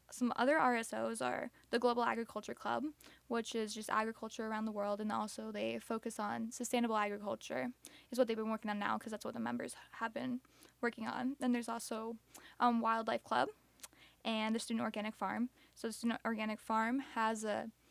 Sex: female